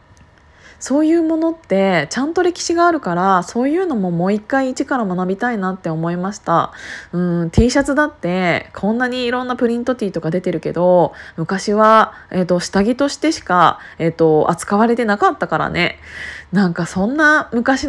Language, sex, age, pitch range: Japanese, female, 20-39, 170-250 Hz